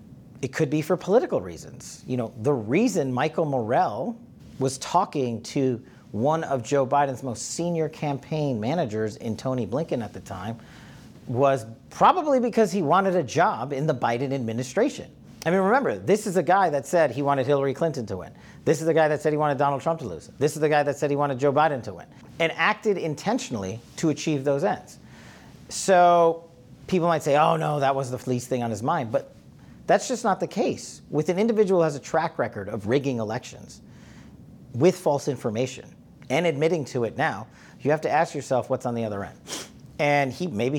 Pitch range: 125-165 Hz